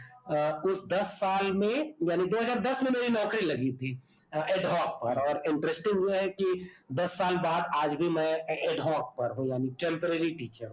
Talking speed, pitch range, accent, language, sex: 140 wpm, 155-210 Hz, native, Hindi, male